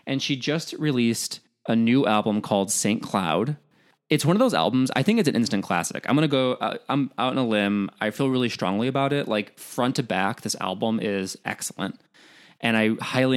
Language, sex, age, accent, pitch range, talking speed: English, male, 20-39, American, 105-145 Hz, 210 wpm